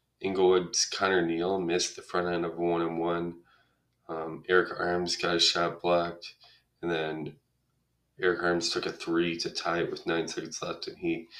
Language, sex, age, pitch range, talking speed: English, male, 20-39, 80-90 Hz, 180 wpm